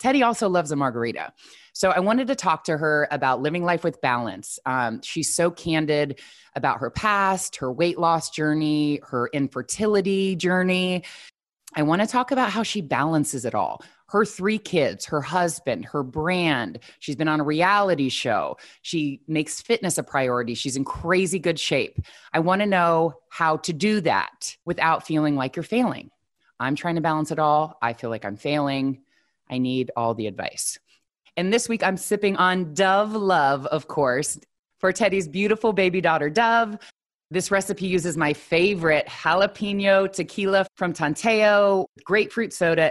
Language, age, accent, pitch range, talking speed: English, 20-39, American, 145-195 Hz, 165 wpm